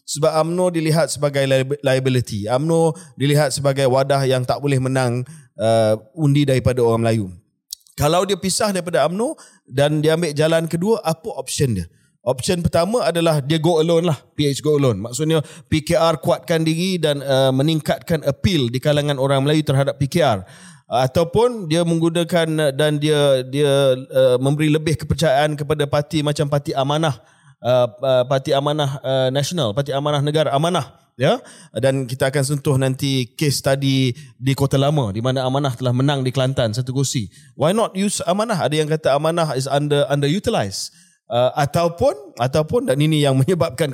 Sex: male